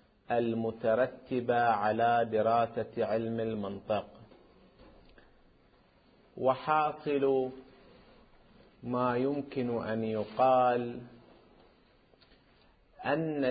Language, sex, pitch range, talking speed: Arabic, male, 115-135 Hz, 50 wpm